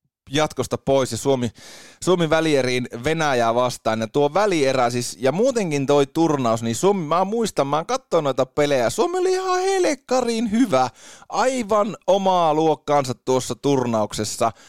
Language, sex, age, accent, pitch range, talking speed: Finnish, male, 30-49, native, 120-170 Hz, 140 wpm